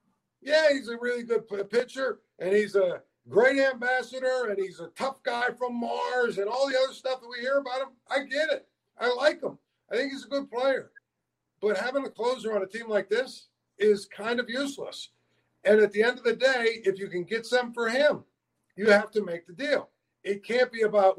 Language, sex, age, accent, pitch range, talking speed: English, male, 50-69, American, 200-255 Hz, 220 wpm